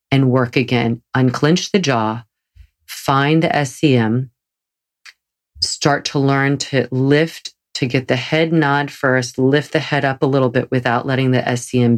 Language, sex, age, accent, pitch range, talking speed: English, female, 40-59, American, 125-150 Hz, 155 wpm